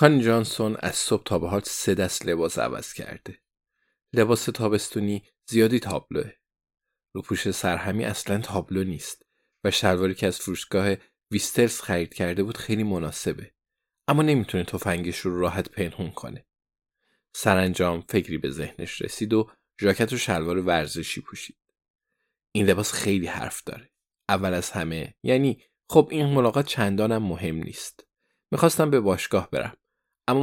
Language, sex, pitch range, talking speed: Persian, male, 90-115 Hz, 135 wpm